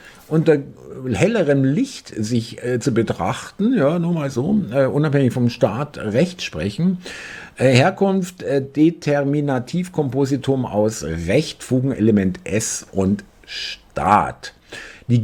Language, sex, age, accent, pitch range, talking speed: German, male, 50-69, German, 105-140 Hz, 110 wpm